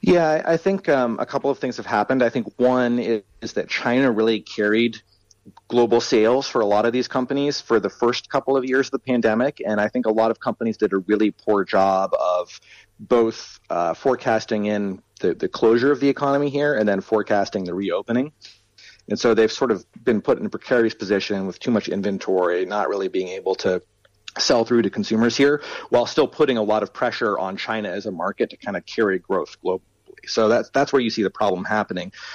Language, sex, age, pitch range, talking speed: English, male, 40-59, 105-135 Hz, 215 wpm